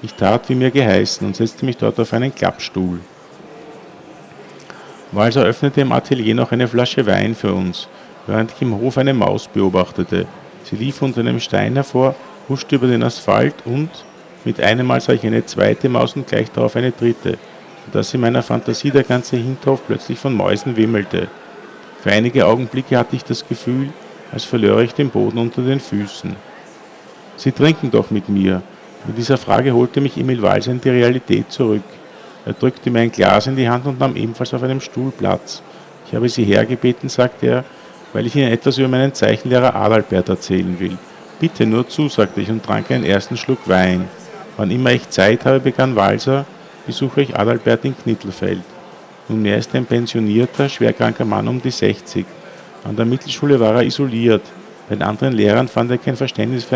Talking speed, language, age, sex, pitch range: 185 wpm, German, 50-69, male, 105-130 Hz